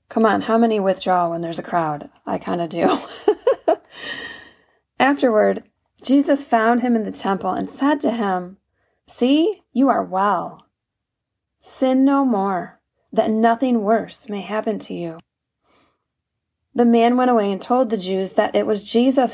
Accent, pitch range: American, 190-245 Hz